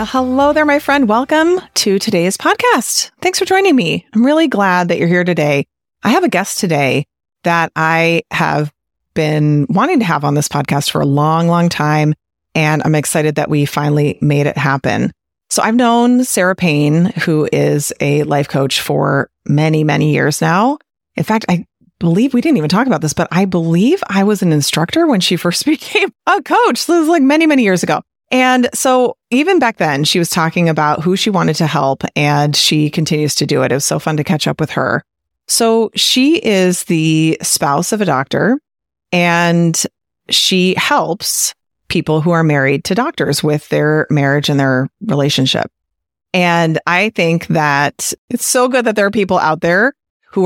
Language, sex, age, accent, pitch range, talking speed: English, female, 30-49, American, 150-225 Hz, 190 wpm